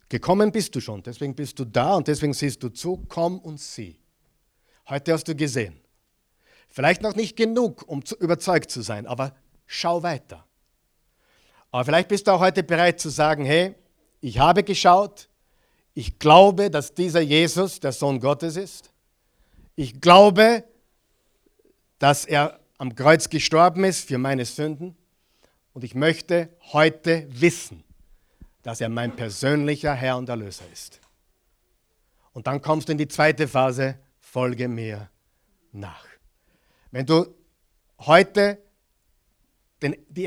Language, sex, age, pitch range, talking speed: German, male, 50-69, 125-175 Hz, 135 wpm